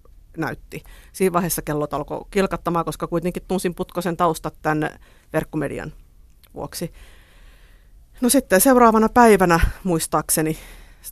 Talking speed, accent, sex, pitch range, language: 110 wpm, native, female, 155-180 Hz, Finnish